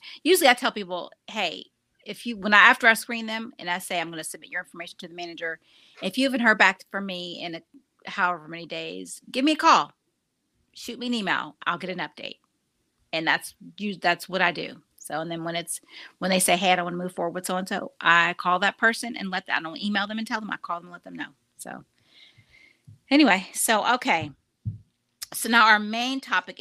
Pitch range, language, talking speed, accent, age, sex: 175-235 Hz, English, 235 wpm, American, 40-59, female